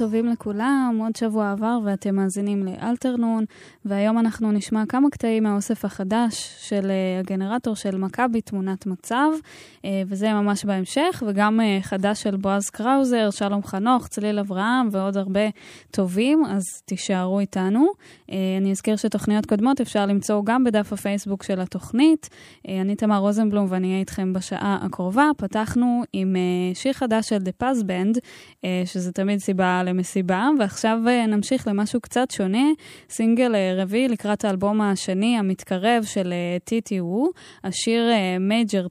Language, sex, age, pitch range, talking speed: Hebrew, female, 10-29, 190-230 Hz, 135 wpm